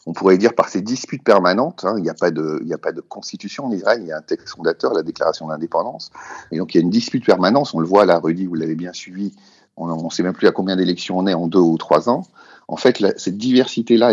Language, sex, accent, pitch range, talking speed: French, male, French, 85-110 Hz, 270 wpm